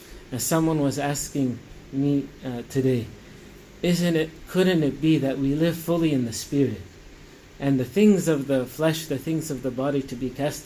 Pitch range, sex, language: 130-160 Hz, male, English